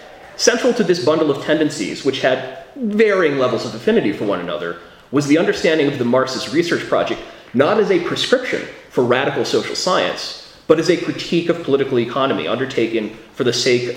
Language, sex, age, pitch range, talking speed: English, male, 30-49, 120-175 Hz, 180 wpm